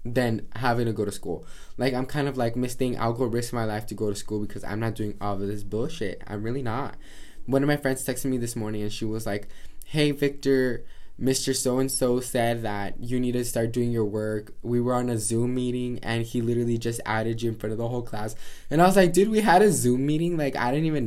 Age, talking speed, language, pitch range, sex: 10-29, 260 wpm, English, 110-135 Hz, male